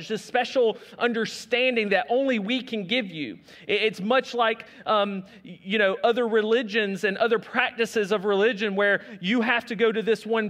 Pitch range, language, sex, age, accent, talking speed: 205-240 Hz, English, male, 40-59, American, 170 wpm